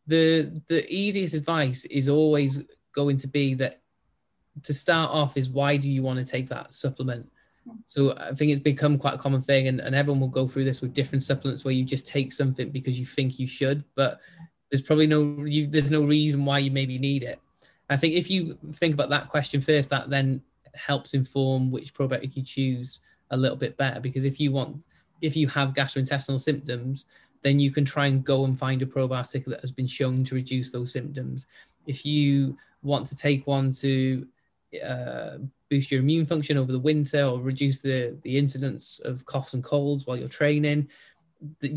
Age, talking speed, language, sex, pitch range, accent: 10-29, 200 wpm, English, male, 130-145 Hz, British